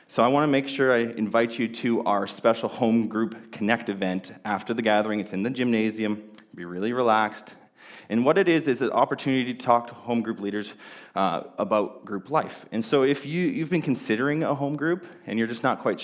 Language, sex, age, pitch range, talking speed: English, male, 20-39, 100-135 Hz, 215 wpm